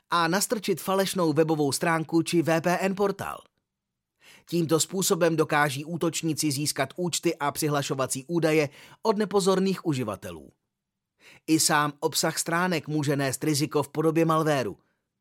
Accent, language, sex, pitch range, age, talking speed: native, Czech, male, 140-175 Hz, 30-49, 120 wpm